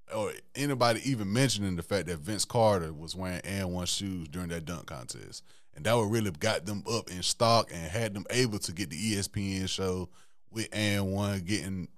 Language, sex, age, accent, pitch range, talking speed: English, male, 20-39, American, 90-110 Hz, 200 wpm